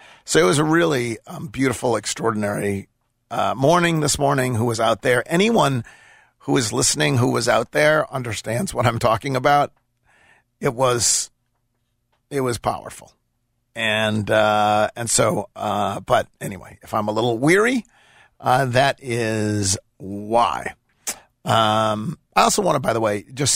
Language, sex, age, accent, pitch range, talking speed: English, male, 50-69, American, 115-150 Hz, 155 wpm